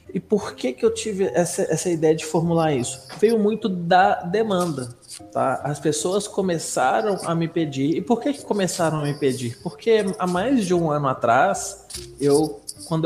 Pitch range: 145-205 Hz